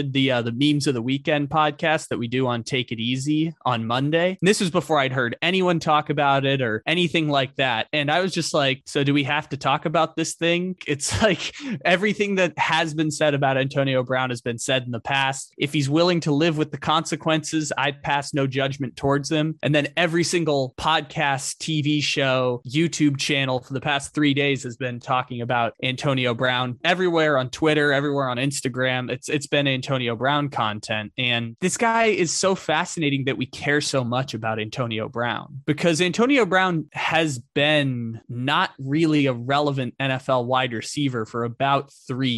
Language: English